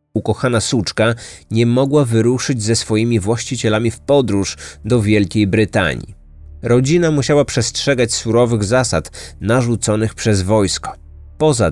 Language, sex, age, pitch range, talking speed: Polish, male, 30-49, 90-120 Hz, 115 wpm